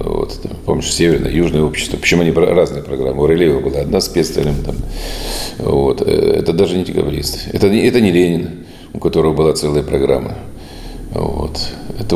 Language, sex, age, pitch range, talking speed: Russian, male, 40-59, 75-85 Hz, 140 wpm